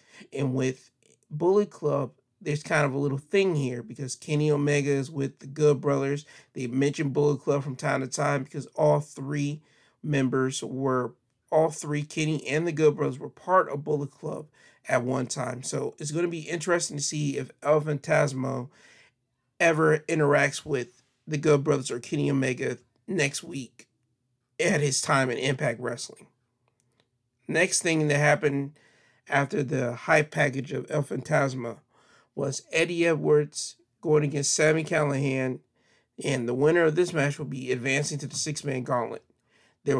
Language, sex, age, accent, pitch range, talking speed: English, male, 40-59, American, 135-155 Hz, 160 wpm